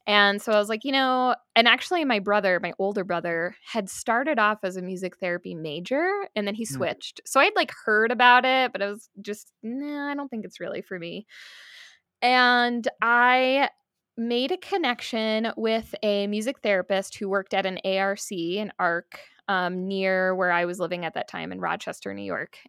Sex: female